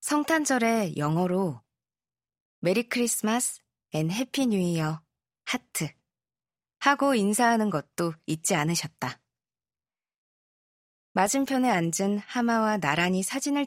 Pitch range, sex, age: 150-215 Hz, female, 20-39